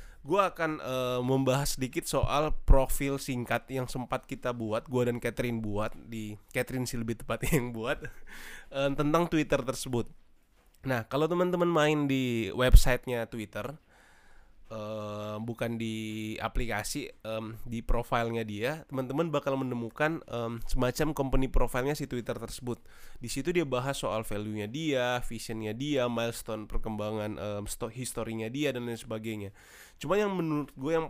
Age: 20-39